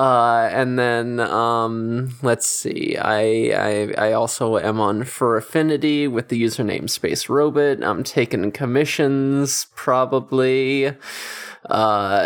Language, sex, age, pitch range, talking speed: English, male, 20-39, 115-145 Hz, 120 wpm